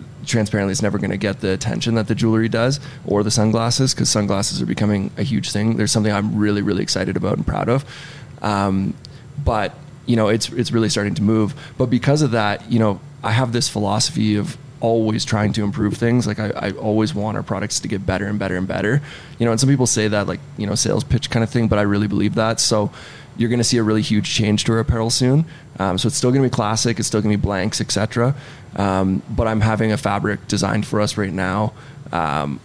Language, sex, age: Spanish, male, 20-39